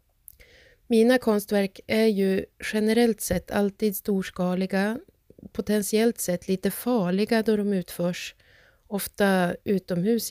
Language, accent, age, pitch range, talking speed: Swedish, native, 30-49, 180-220 Hz, 100 wpm